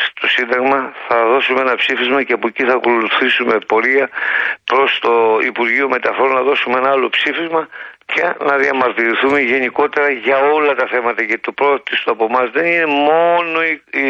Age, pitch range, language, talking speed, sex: 50-69, 130-160 Hz, Greek, 160 wpm, male